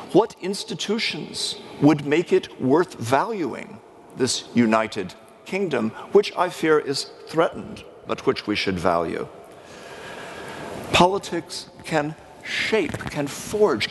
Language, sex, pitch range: English, male, 115-175 Hz